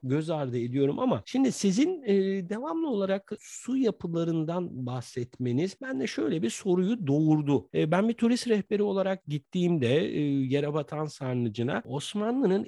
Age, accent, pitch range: 50-69, native, 135-185 Hz